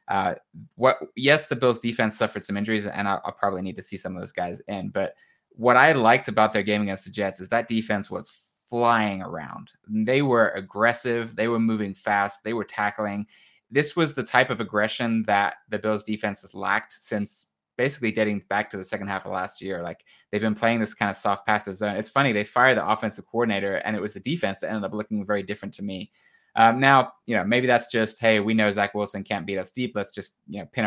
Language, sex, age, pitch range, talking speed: English, male, 20-39, 100-115 Hz, 235 wpm